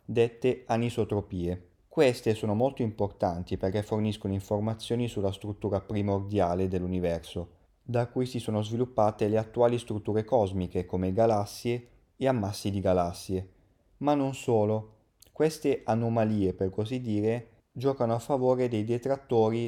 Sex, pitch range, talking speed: male, 95-120 Hz, 125 wpm